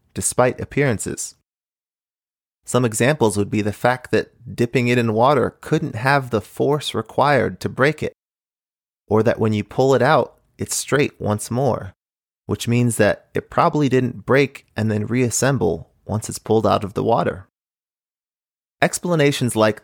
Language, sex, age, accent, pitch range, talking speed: English, male, 30-49, American, 105-130 Hz, 155 wpm